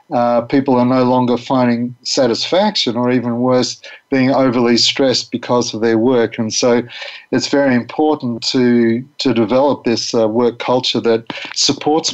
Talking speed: 155 wpm